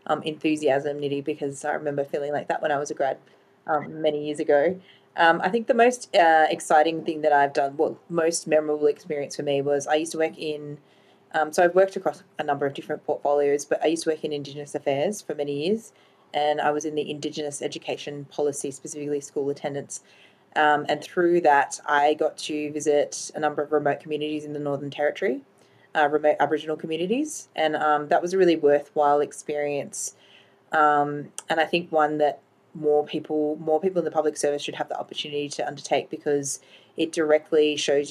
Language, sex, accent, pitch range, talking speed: English, female, Australian, 145-155 Hz, 200 wpm